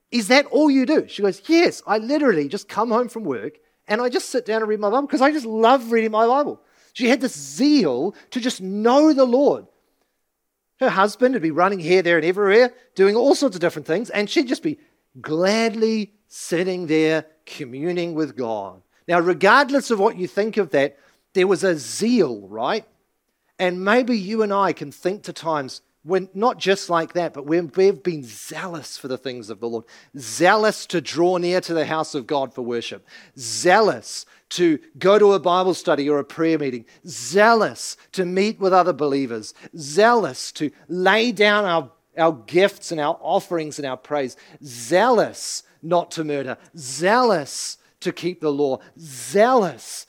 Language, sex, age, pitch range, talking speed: English, male, 40-59, 155-220 Hz, 185 wpm